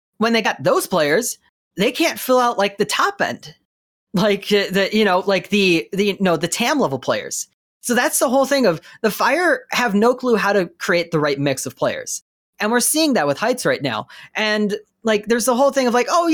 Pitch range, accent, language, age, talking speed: 175-245 Hz, American, English, 30-49, 235 wpm